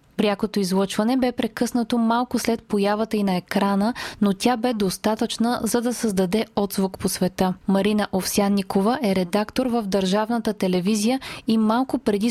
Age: 20-39